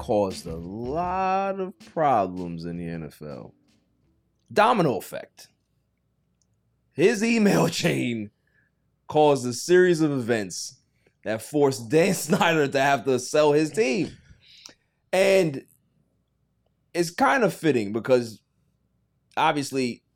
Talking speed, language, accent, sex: 105 wpm, English, American, male